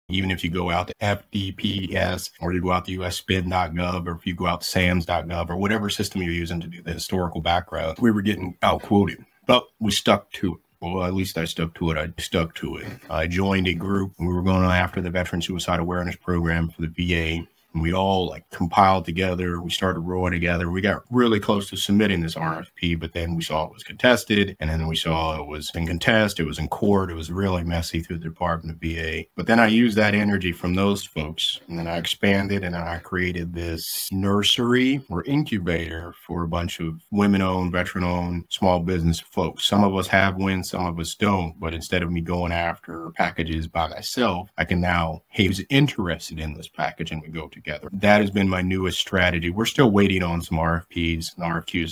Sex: male